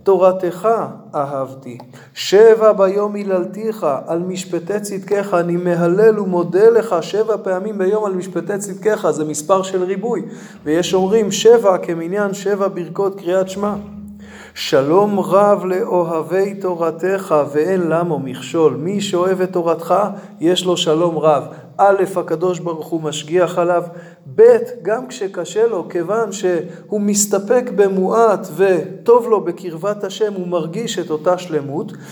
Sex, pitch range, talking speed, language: male, 165-205 Hz, 125 wpm, Hebrew